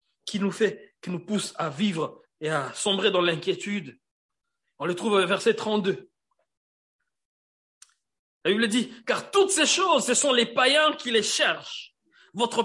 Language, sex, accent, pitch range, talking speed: French, male, French, 215-285 Hz, 155 wpm